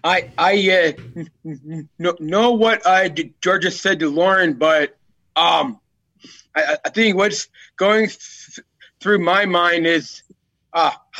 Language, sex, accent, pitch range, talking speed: English, male, American, 165-220 Hz, 125 wpm